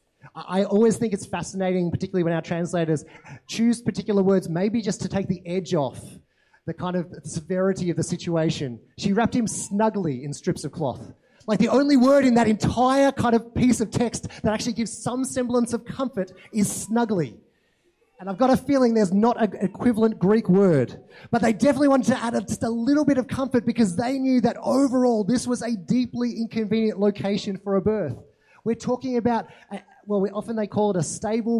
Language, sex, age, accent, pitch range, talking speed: English, male, 30-49, Australian, 170-230 Hz, 195 wpm